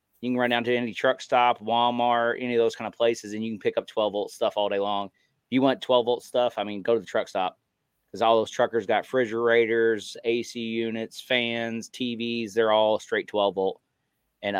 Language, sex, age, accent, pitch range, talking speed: English, male, 30-49, American, 105-120 Hz, 215 wpm